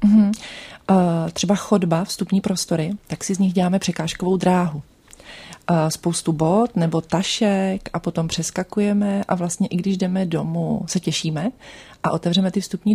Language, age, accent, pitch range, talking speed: Czech, 30-49, native, 160-185 Hz, 140 wpm